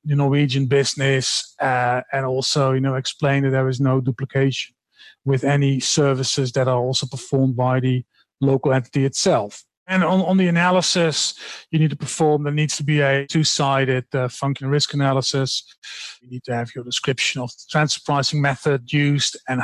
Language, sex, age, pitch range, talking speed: English, male, 40-59, 130-150 Hz, 170 wpm